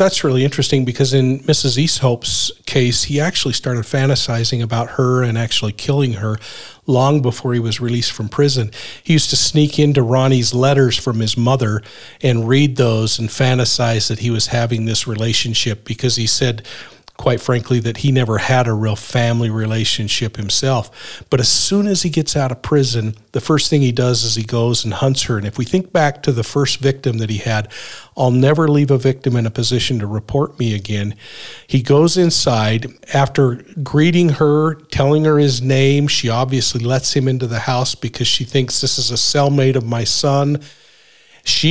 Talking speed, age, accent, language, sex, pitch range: 190 wpm, 50-69, American, English, male, 120-140 Hz